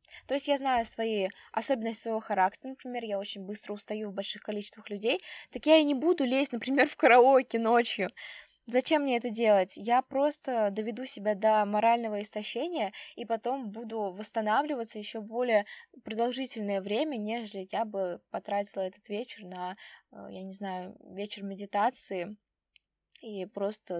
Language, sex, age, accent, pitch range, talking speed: Russian, female, 10-29, native, 200-240 Hz, 150 wpm